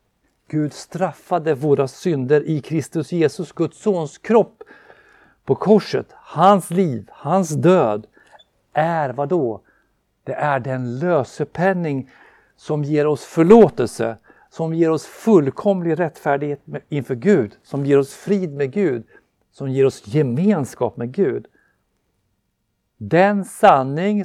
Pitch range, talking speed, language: 120-180 Hz, 120 wpm, Swedish